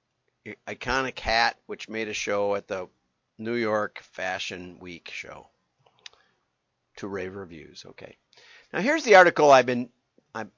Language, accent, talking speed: English, American, 135 wpm